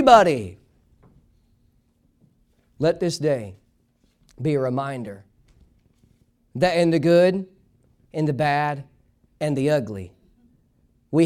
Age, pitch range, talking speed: 40-59, 125-185 Hz, 90 wpm